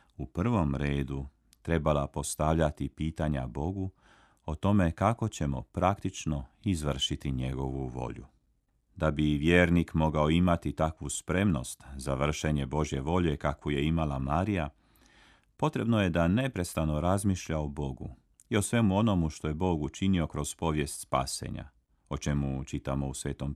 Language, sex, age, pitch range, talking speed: Croatian, male, 40-59, 70-90 Hz, 135 wpm